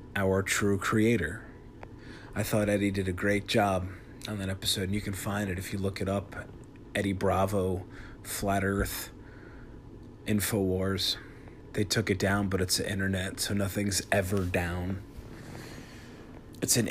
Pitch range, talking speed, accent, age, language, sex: 95-115 Hz, 150 wpm, American, 30-49, English, male